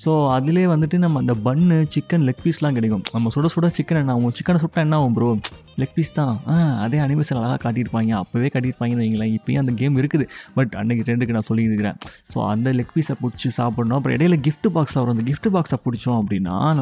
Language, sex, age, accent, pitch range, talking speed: Tamil, male, 20-39, native, 115-150 Hz, 200 wpm